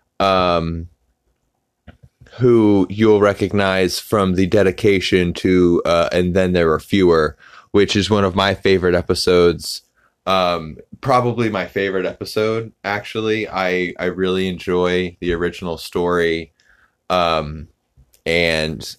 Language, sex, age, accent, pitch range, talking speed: English, male, 20-39, American, 80-100 Hz, 115 wpm